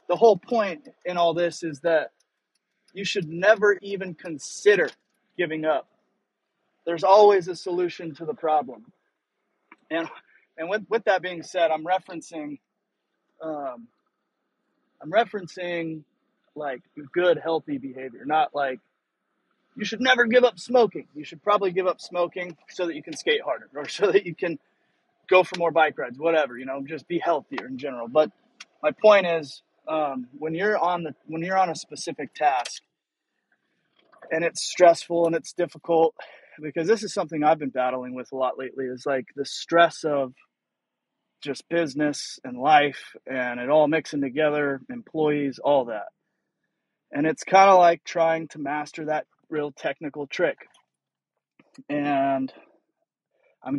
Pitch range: 150-190 Hz